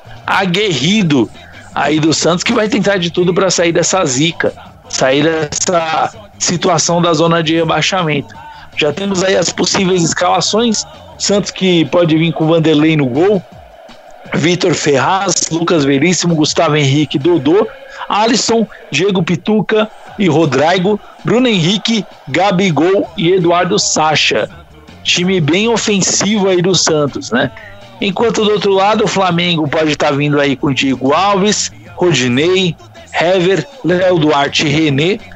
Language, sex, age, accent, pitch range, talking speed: Portuguese, male, 50-69, Brazilian, 155-200 Hz, 130 wpm